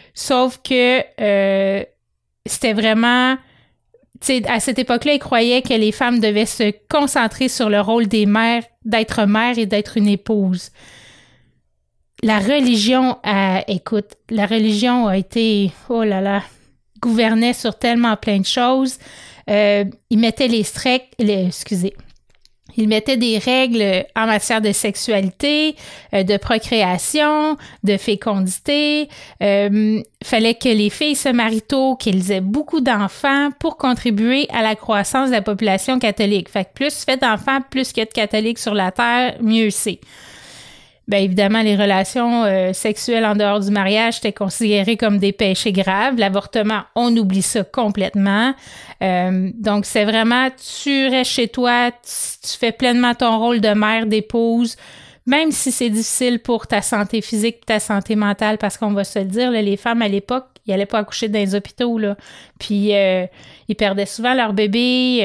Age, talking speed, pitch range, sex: 30-49, 165 wpm, 205-245 Hz, female